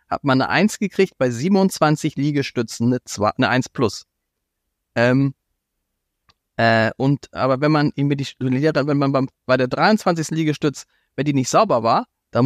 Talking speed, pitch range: 160 wpm, 125-165 Hz